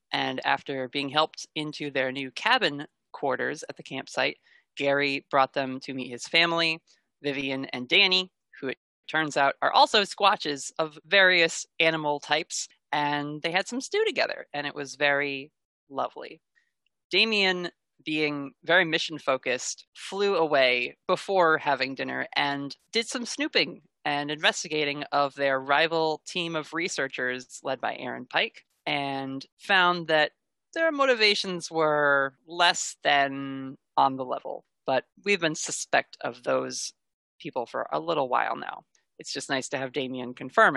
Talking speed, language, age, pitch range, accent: 145 wpm, English, 20-39, 135-170 Hz, American